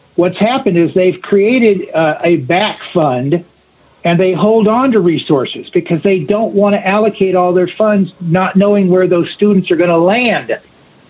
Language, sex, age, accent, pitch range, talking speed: English, male, 60-79, American, 165-200 Hz, 180 wpm